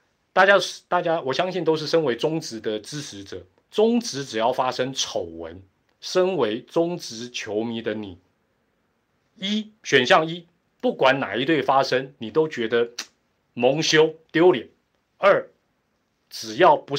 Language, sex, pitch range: Chinese, male, 125-190 Hz